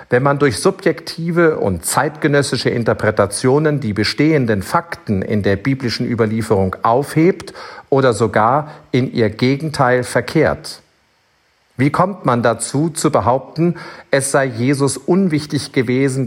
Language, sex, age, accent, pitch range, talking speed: German, male, 50-69, German, 115-155 Hz, 120 wpm